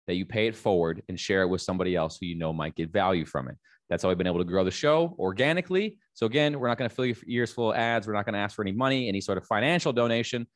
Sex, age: male, 20-39